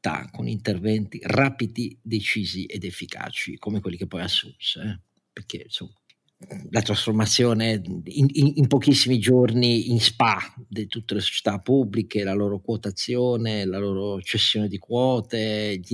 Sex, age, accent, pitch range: male, 50-69, native, 100-125 Hz